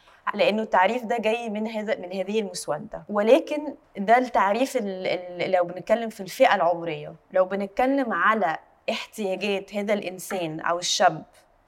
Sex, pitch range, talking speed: female, 185-255 Hz, 135 wpm